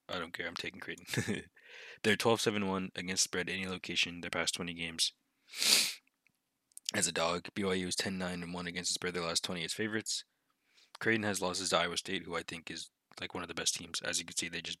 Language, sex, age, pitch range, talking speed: English, male, 20-39, 85-100 Hz, 205 wpm